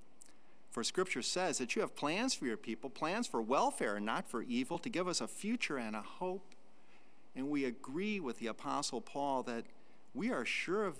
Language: English